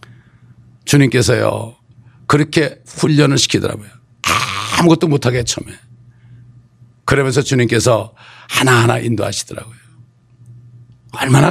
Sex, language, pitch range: male, Korean, 120-195 Hz